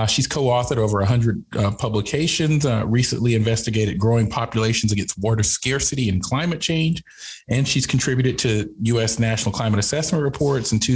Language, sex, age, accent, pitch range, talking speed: English, male, 40-59, American, 105-135 Hz, 155 wpm